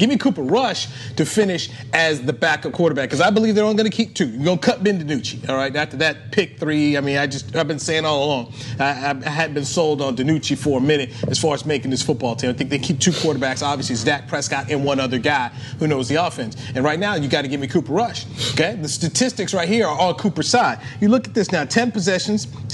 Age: 30-49